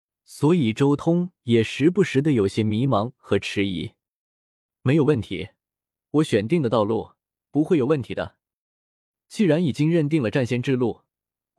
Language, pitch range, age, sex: Chinese, 110-160 Hz, 20-39, male